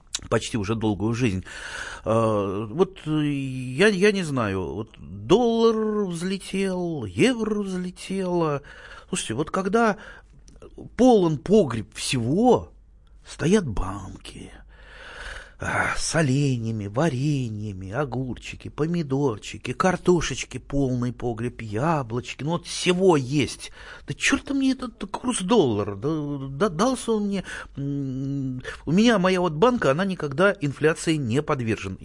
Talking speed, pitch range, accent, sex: 105 wpm, 110-170 Hz, native, male